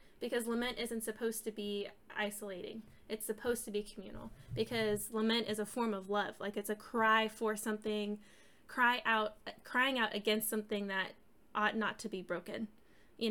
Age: 10-29